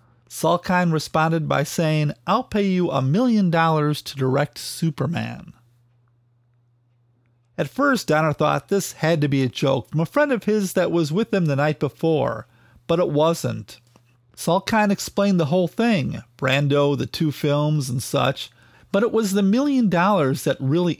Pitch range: 130-185 Hz